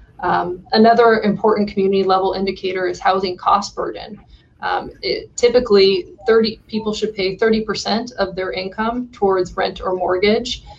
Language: English